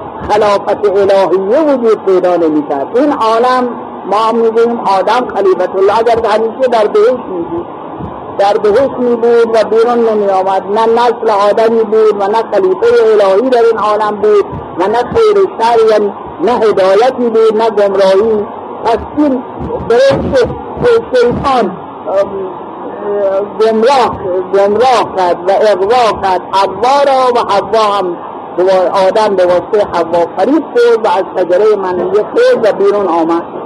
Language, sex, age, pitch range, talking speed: Persian, male, 50-69, 180-230 Hz, 110 wpm